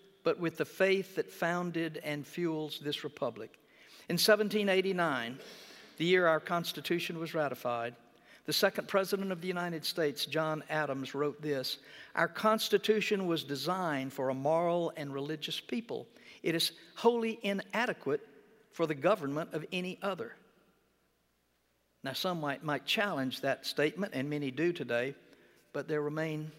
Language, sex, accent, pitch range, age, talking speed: English, male, American, 145-190 Hz, 60-79, 140 wpm